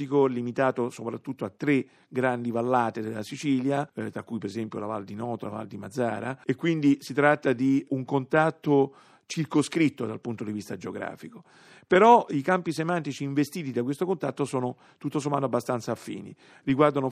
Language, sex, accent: Italian, male, native